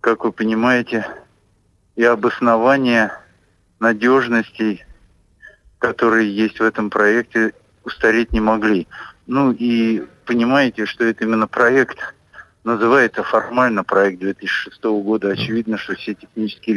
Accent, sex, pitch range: native, male, 100-115 Hz